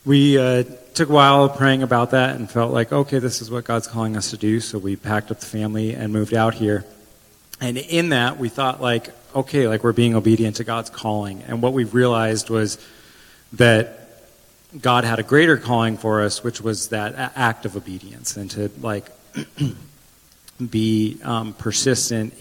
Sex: male